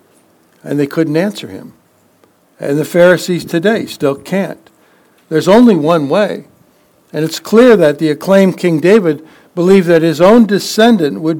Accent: American